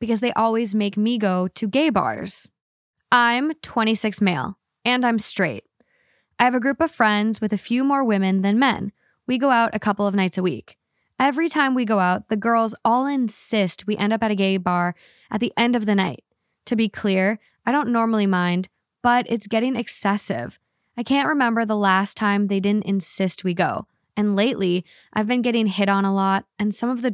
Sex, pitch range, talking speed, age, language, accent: female, 195-240 Hz, 210 wpm, 10-29, English, American